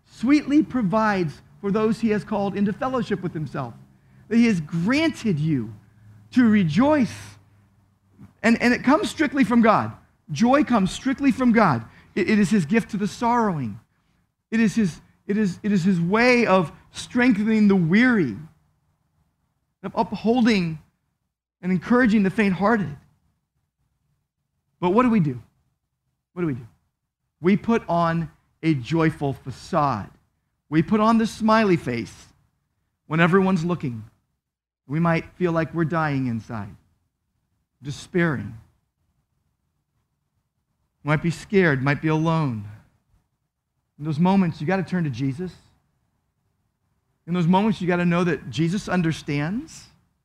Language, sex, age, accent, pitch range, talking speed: English, male, 40-59, American, 145-220 Hz, 135 wpm